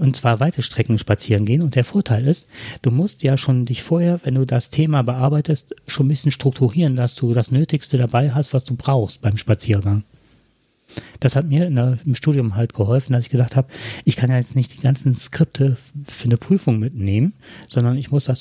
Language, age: German, 40-59